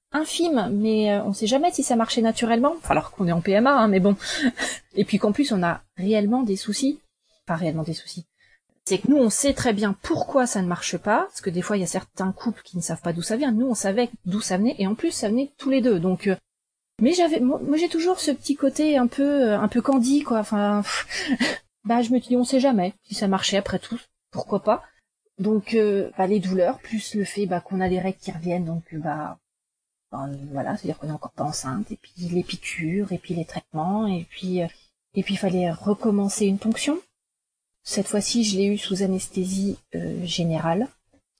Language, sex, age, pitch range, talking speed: French, female, 30-49, 190-255 Hz, 225 wpm